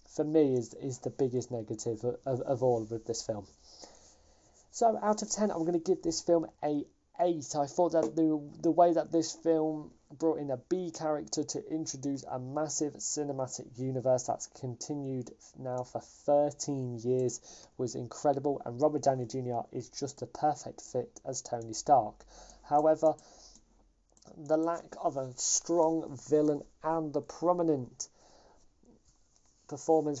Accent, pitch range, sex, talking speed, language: British, 130-155 Hz, male, 155 wpm, English